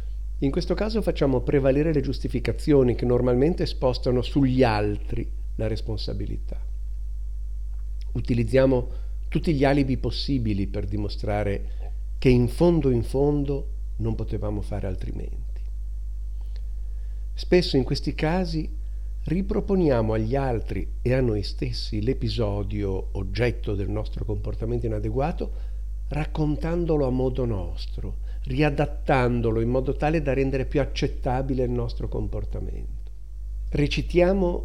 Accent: native